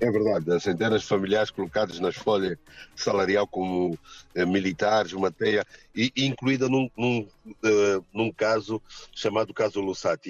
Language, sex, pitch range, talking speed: Portuguese, male, 100-120 Hz, 150 wpm